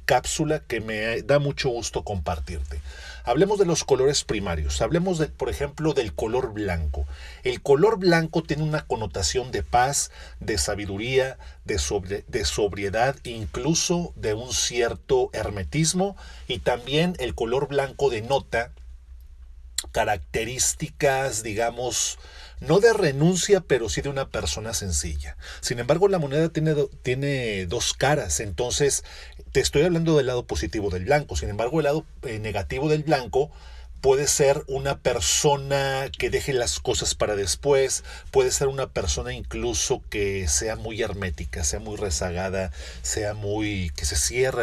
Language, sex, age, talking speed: Spanish, male, 40-59, 140 wpm